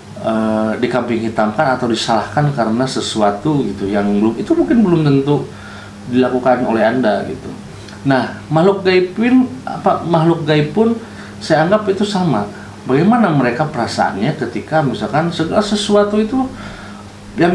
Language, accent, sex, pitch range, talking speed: Indonesian, native, male, 105-160 Hz, 130 wpm